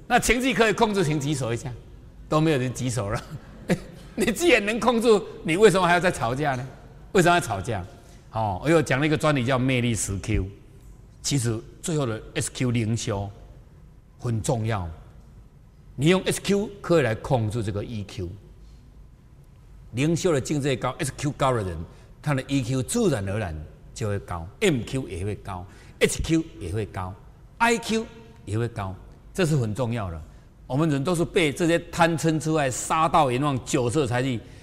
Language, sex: Chinese, male